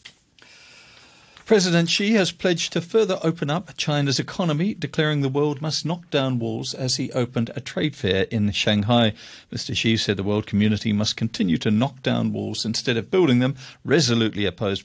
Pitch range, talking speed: 105-140 Hz, 175 wpm